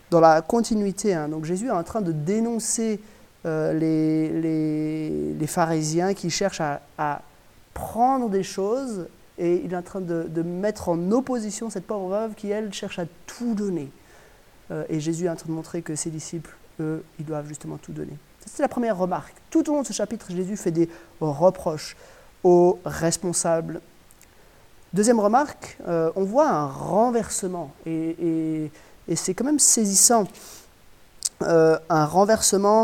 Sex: male